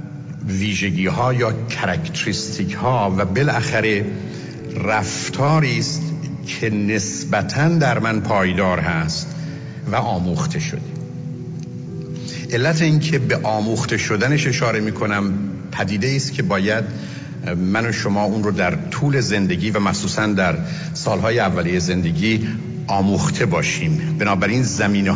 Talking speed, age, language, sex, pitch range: 115 wpm, 60-79, Persian, male, 100-155 Hz